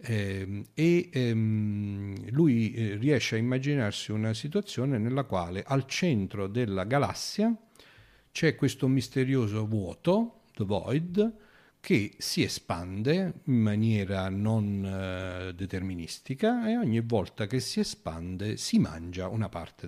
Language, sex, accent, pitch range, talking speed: Italian, male, native, 100-145 Hz, 120 wpm